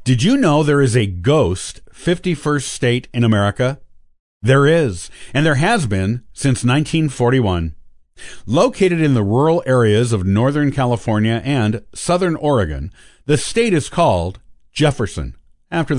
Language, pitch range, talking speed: English, 105-150 Hz, 135 wpm